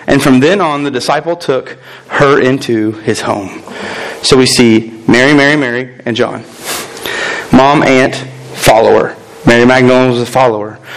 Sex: male